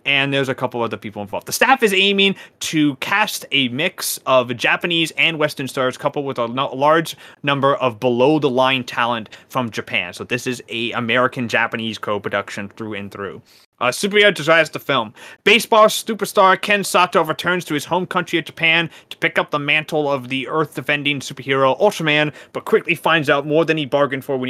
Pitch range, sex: 125-165 Hz, male